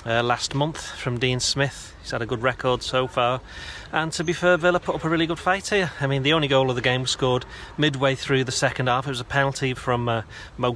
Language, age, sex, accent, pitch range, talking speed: English, 30-49, male, British, 125-145 Hz, 260 wpm